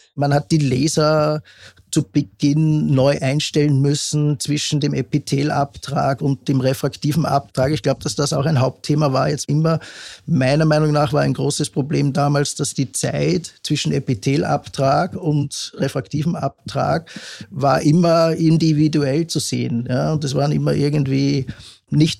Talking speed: 145 wpm